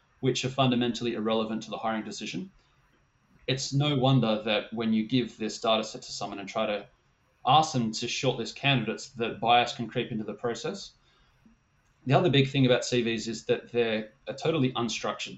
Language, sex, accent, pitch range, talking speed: English, male, Australian, 110-130 Hz, 185 wpm